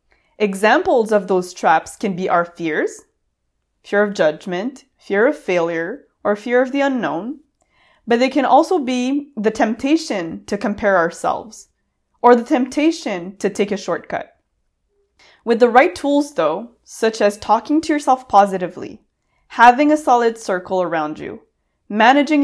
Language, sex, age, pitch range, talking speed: English, female, 20-39, 195-255 Hz, 145 wpm